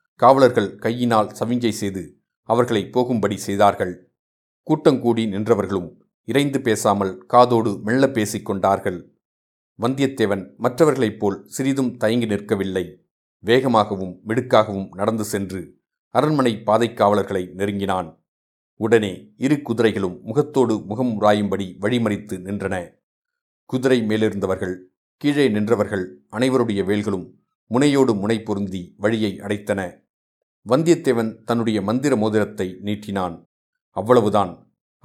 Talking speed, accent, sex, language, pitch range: 90 wpm, native, male, Tamil, 100-125 Hz